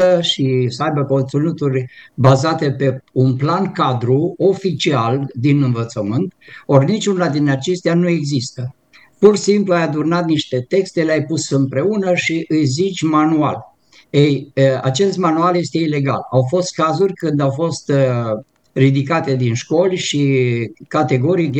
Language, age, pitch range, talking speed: Romanian, 60-79, 135-165 Hz, 130 wpm